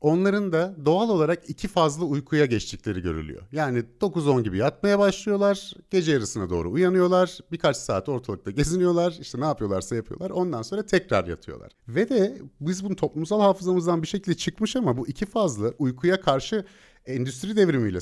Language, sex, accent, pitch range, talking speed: Turkish, male, native, 115-180 Hz, 155 wpm